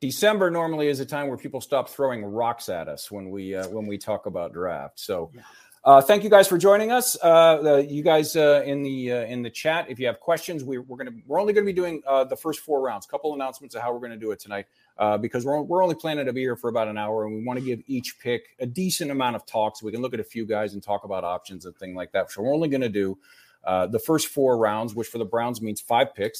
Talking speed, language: 285 wpm, English